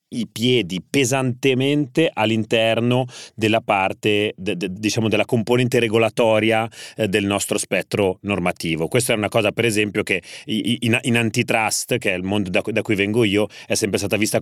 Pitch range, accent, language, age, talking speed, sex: 105-125 Hz, native, Italian, 30-49, 165 wpm, male